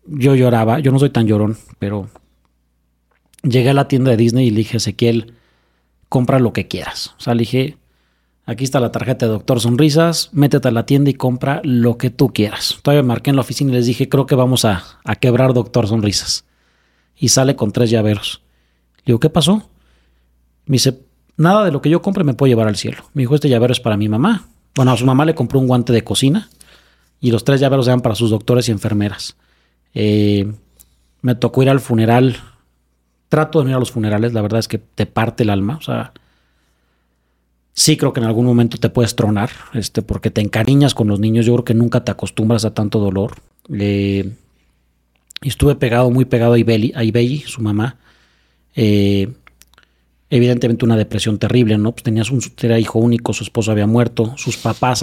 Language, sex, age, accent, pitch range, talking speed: English, male, 40-59, Mexican, 100-125 Hz, 200 wpm